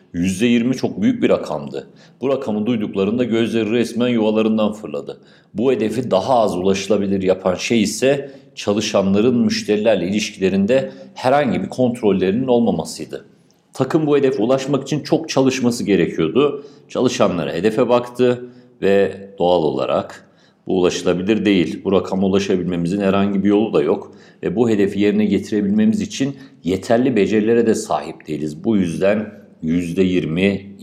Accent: native